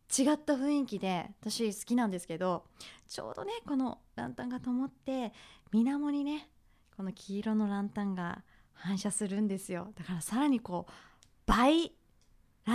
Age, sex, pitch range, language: 20-39, female, 195-275 Hz, Japanese